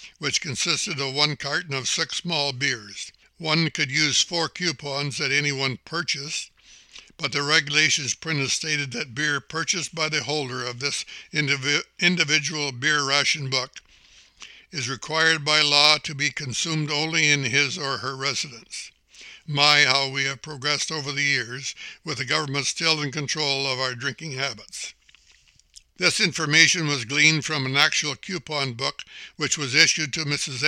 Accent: American